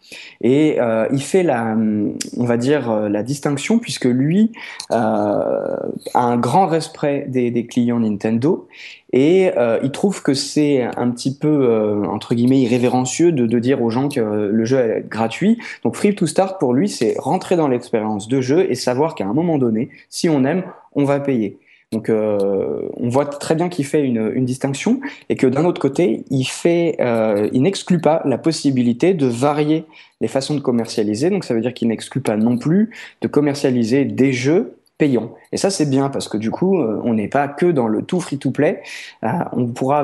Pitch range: 115-150 Hz